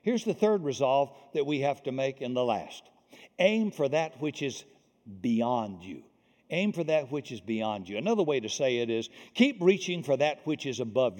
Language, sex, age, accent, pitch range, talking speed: English, male, 60-79, American, 135-180 Hz, 210 wpm